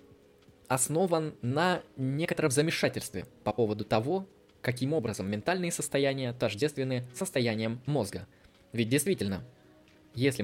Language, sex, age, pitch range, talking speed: Russian, male, 20-39, 110-165 Hz, 100 wpm